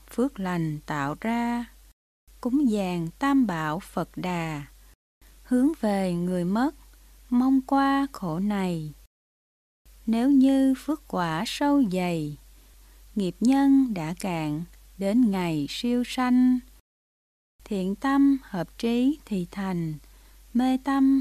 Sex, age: female, 20-39